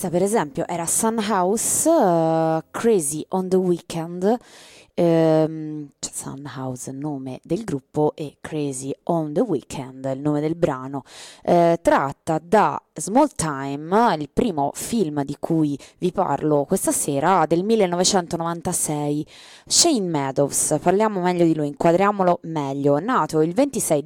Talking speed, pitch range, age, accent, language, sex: 130 wpm, 150-190 Hz, 20-39, native, Italian, female